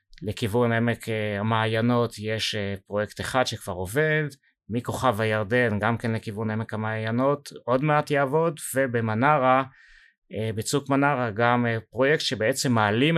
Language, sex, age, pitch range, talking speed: Hebrew, male, 30-49, 110-140 Hz, 115 wpm